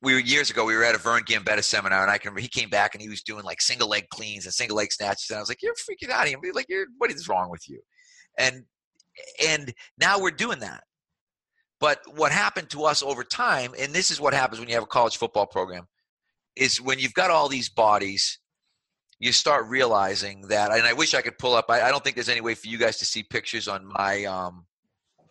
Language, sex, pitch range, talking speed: English, male, 100-130 Hz, 250 wpm